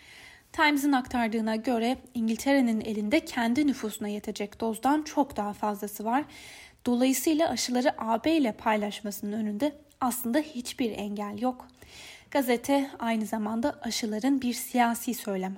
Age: 10-29